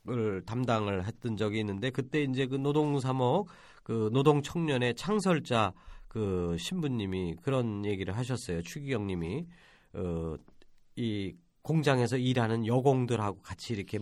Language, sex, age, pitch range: Korean, male, 40-59, 115-190 Hz